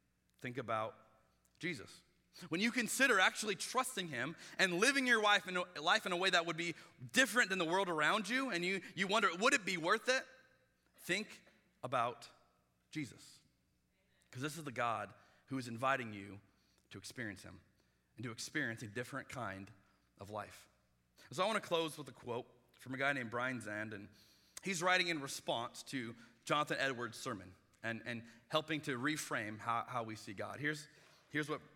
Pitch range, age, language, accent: 110-175 Hz, 30-49, English, American